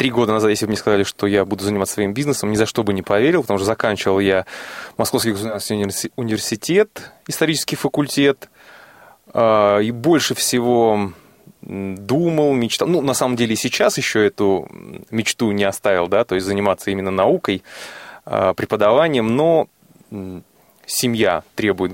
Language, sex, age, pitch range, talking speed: Russian, male, 20-39, 100-135 Hz, 145 wpm